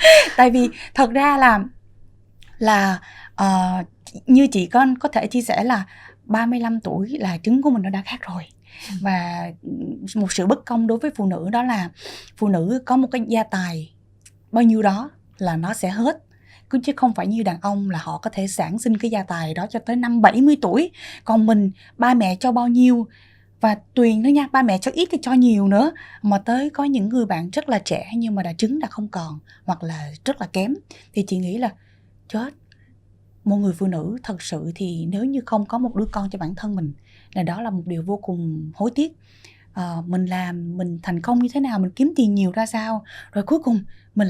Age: 20-39